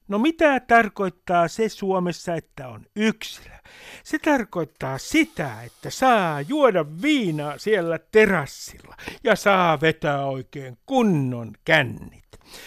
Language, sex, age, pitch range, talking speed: Finnish, male, 60-79, 145-200 Hz, 110 wpm